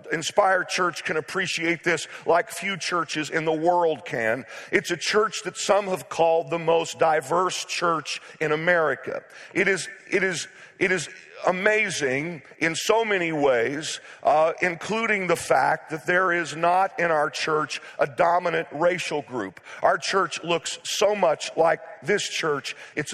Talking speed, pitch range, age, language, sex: 155 wpm, 160-185 Hz, 50-69, English, male